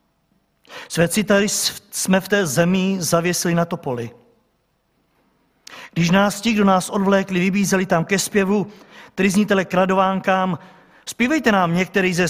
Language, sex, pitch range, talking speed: Czech, male, 145-195 Hz, 125 wpm